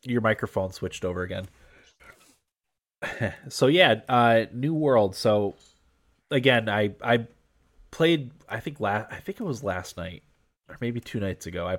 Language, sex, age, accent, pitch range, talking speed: English, male, 20-39, American, 95-110 Hz, 155 wpm